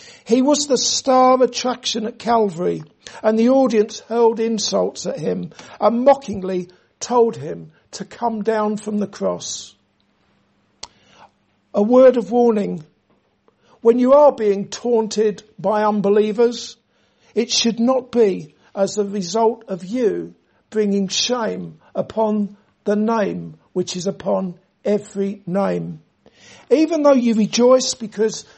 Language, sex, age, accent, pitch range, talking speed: English, male, 60-79, British, 205-240 Hz, 125 wpm